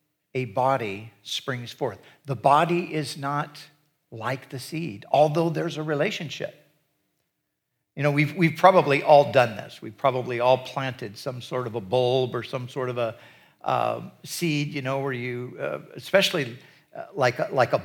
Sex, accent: male, American